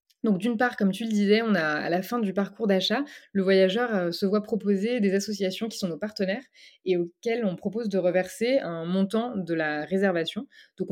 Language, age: French, 20-39